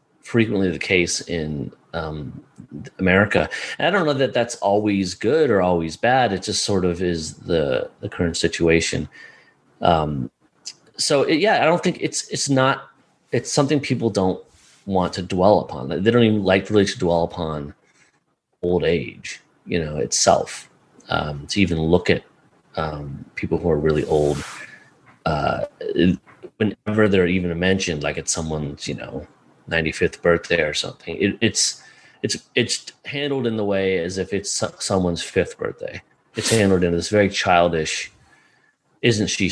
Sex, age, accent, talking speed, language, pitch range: male, 30-49, American, 155 wpm, English, 80-105 Hz